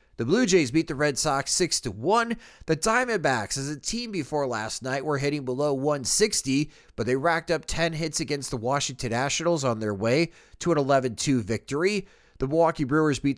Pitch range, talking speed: 125-165 Hz, 185 wpm